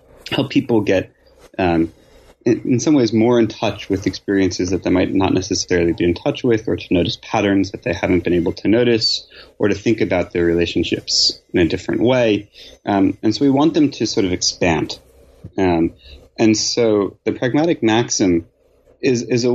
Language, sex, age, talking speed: English, male, 30-49, 190 wpm